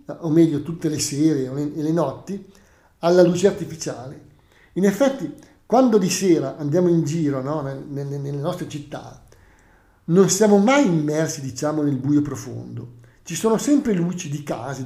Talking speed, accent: 160 wpm, native